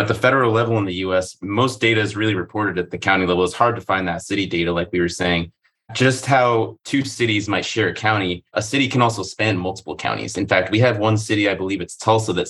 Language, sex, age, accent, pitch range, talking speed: English, male, 20-39, American, 90-110 Hz, 255 wpm